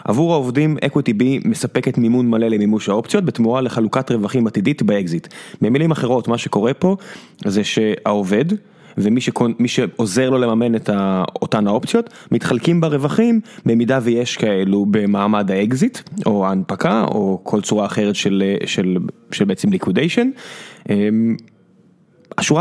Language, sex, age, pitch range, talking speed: Hebrew, male, 20-39, 110-140 Hz, 130 wpm